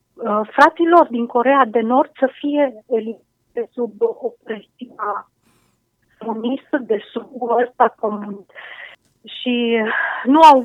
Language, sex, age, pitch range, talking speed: Romanian, female, 30-49, 225-270 Hz, 105 wpm